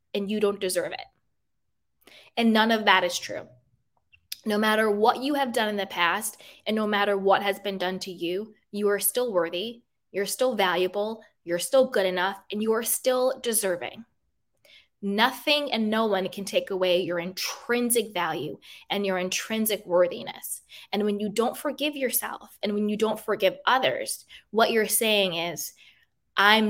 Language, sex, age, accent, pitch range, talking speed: English, female, 20-39, American, 185-225 Hz, 170 wpm